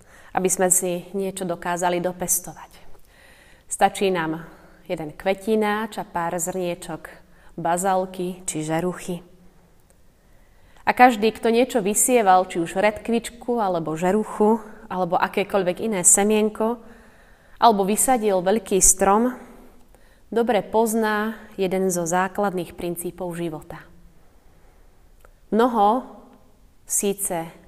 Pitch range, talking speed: 180-220 Hz, 95 wpm